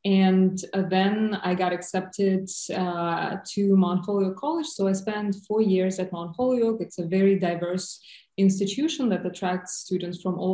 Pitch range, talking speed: 180-215 Hz, 160 wpm